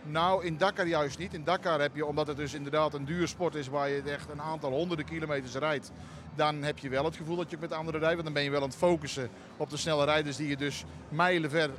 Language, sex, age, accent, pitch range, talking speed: Dutch, male, 40-59, Dutch, 135-155 Hz, 270 wpm